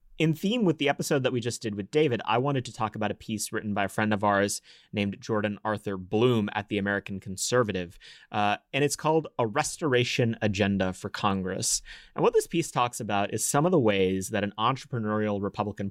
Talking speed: 210 wpm